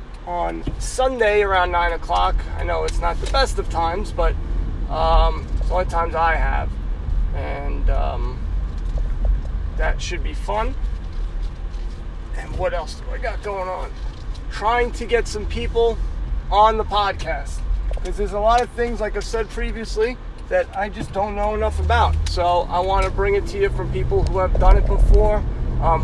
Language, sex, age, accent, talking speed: English, male, 30-49, American, 175 wpm